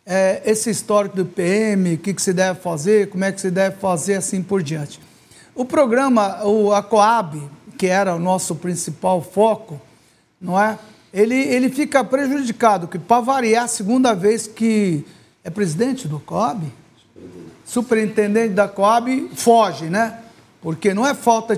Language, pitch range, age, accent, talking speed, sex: Portuguese, 190-235 Hz, 60-79, Brazilian, 155 wpm, male